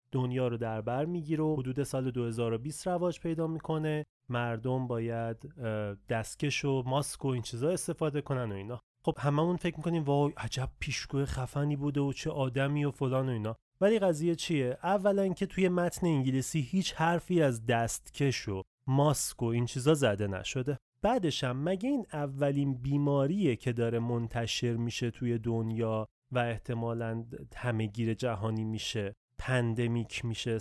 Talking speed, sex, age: 150 wpm, male, 30-49